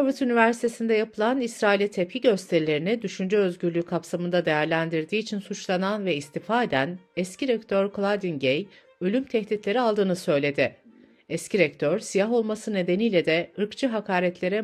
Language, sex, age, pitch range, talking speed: Turkish, female, 60-79, 165-230 Hz, 125 wpm